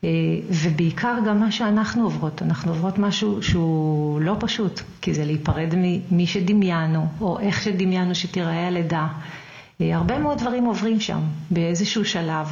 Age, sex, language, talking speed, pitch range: 40-59, female, Hebrew, 135 wpm, 160-205 Hz